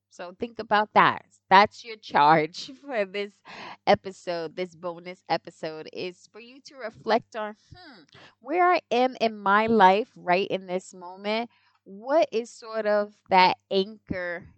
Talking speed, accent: 150 wpm, American